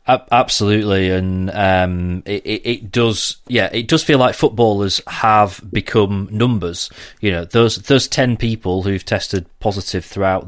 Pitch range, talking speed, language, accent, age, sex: 100-120 Hz, 145 wpm, English, British, 30-49, male